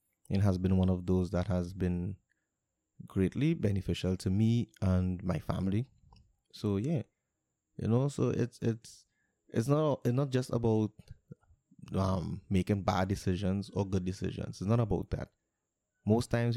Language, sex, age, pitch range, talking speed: English, male, 20-39, 95-110 Hz, 150 wpm